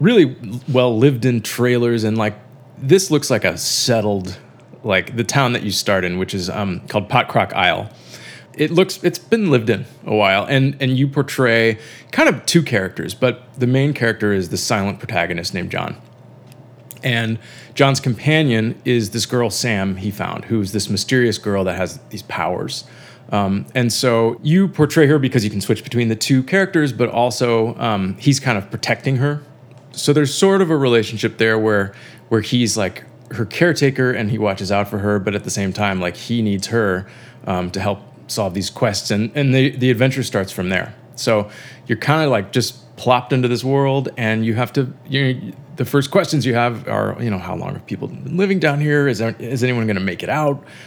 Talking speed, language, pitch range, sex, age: 200 wpm, English, 105-135 Hz, male, 20-39